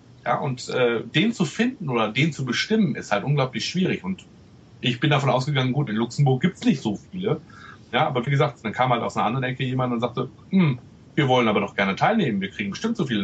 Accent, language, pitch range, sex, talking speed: German, German, 110-150 Hz, male, 240 wpm